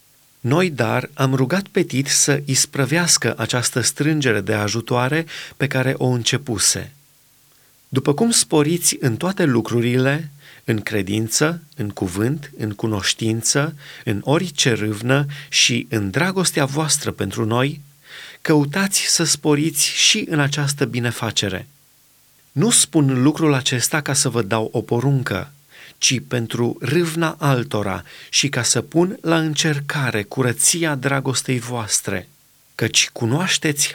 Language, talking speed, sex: Romanian, 120 wpm, male